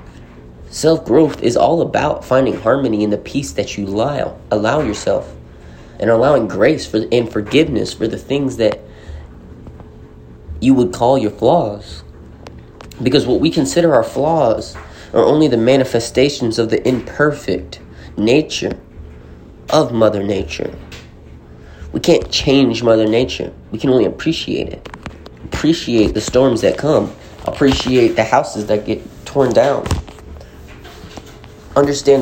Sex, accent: male, American